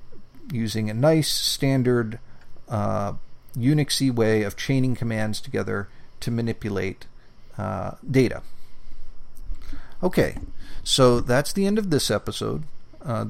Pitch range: 110-135 Hz